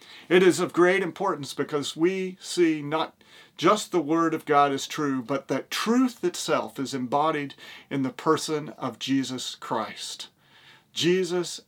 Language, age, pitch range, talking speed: English, 40-59, 135-175 Hz, 150 wpm